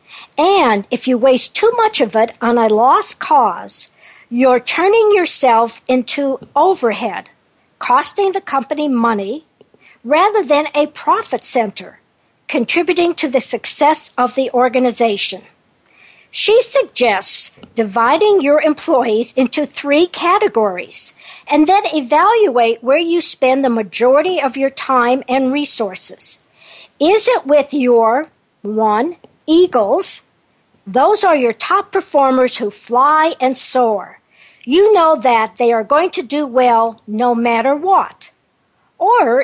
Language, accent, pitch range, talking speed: English, American, 240-340 Hz, 125 wpm